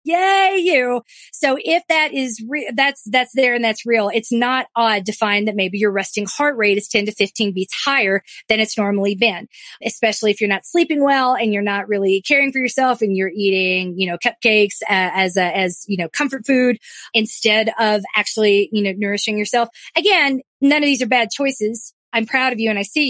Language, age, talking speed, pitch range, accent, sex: English, 30-49, 215 wpm, 205-255 Hz, American, female